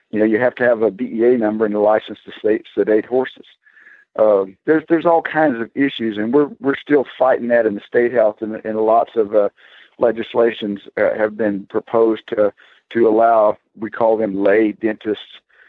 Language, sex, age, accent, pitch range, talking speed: English, male, 50-69, American, 105-125 Hz, 190 wpm